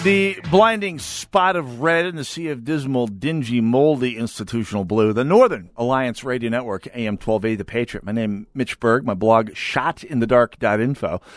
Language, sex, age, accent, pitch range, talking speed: English, male, 50-69, American, 105-135 Hz, 185 wpm